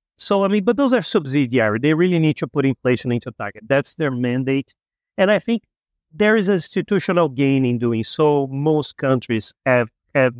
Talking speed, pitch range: 185 wpm, 130-175 Hz